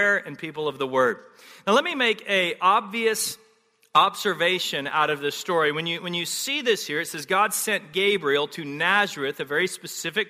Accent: American